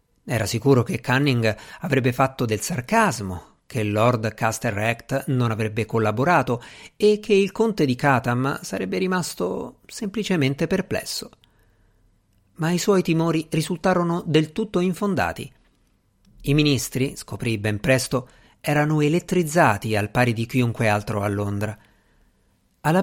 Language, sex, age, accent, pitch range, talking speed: Italian, male, 50-69, native, 110-155 Hz, 125 wpm